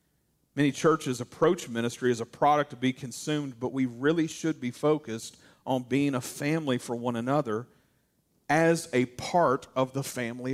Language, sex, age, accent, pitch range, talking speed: English, male, 40-59, American, 125-155 Hz, 165 wpm